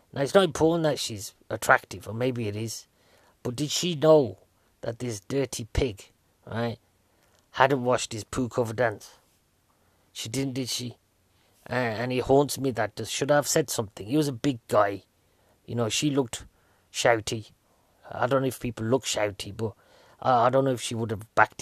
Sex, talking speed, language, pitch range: male, 190 wpm, English, 110-135 Hz